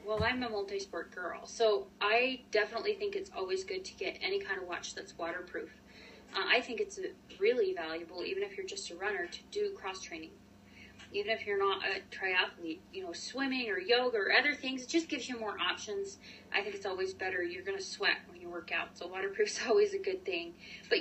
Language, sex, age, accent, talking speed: English, female, 20-39, American, 215 wpm